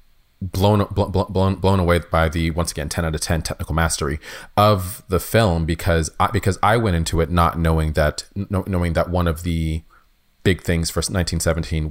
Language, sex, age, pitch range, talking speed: English, male, 30-49, 80-95 Hz, 185 wpm